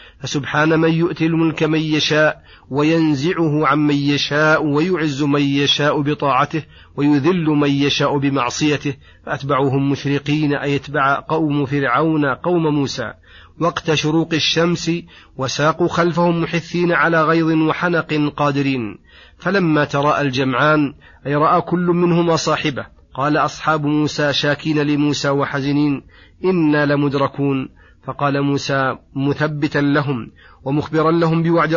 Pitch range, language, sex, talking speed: 145-160 Hz, Arabic, male, 110 wpm